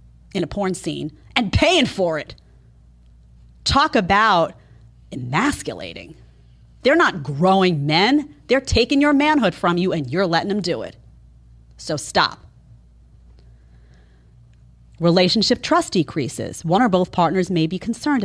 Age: 30-49